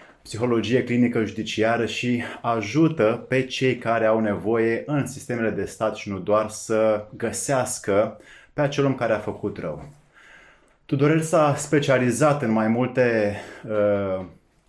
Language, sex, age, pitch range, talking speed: Romanian, male, 20-39, 110-130 Hz, 135 wpm